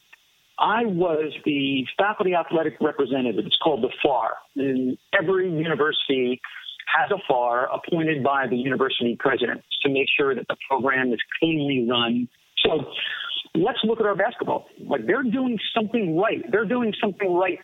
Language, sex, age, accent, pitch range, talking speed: English, male, 50-69, American, 150-205 Hz, 155 wpm